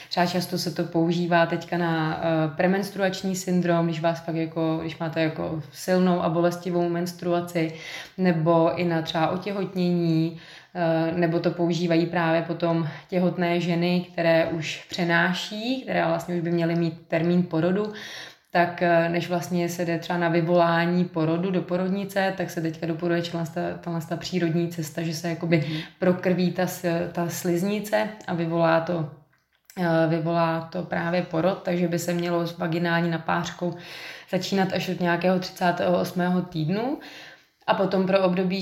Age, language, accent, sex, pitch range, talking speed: 20-39, Czech, native, female, 165-180 Hz, 150 wpm